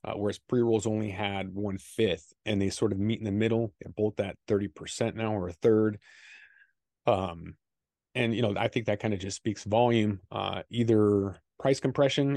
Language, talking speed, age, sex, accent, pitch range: English, 185 wpm, 30-49, male, American, 100-120 Hz